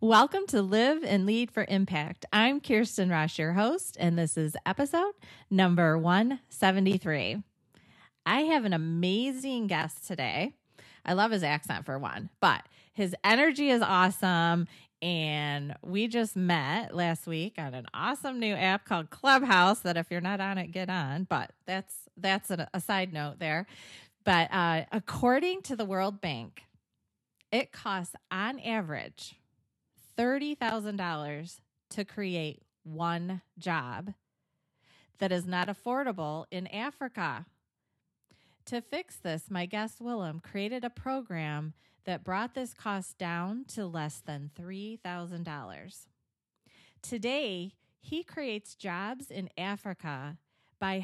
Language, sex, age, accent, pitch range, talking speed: English, female, 30-49, American, 165-220 Hz, 130 wpm